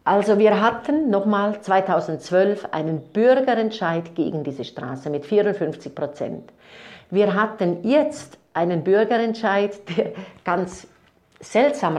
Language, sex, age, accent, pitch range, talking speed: German, female, 50-69, Austrian, 175-225 Hz, 105 wpm